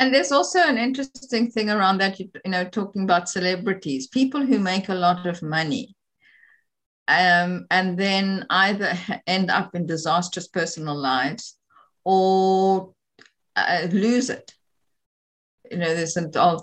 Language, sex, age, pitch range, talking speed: English, female, 50-69, 165-230 Hz, 140 wpm